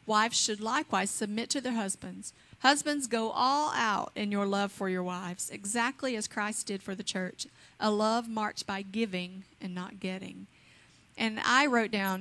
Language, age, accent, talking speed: English, 40-59, American, 175 wpm